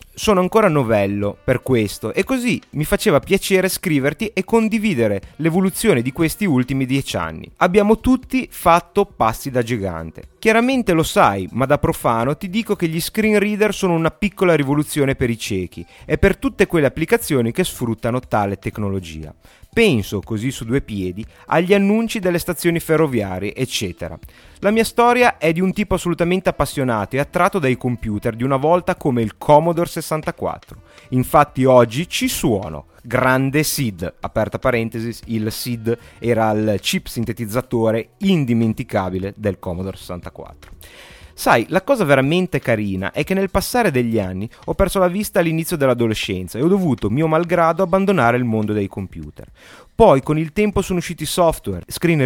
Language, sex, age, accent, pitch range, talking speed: Italian, male, 30-49, native, 115-190 Hz, 155 wpm